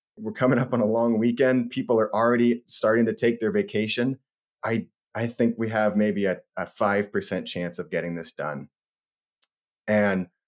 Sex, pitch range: male, 105-125 Hz